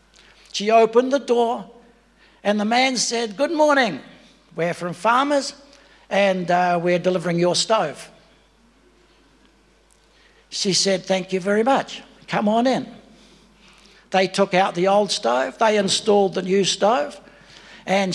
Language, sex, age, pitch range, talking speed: English, male, 60-79, 175-215 Hz, 130 wpm